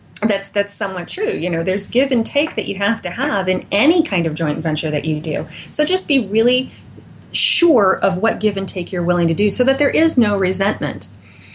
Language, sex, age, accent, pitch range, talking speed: English, female, 30-49, American, 175-240 Hz, 230 wpm